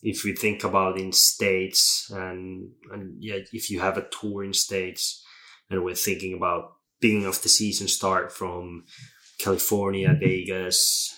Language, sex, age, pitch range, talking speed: Finnish, male, 20-39, 90-105 Hz, 150 wpm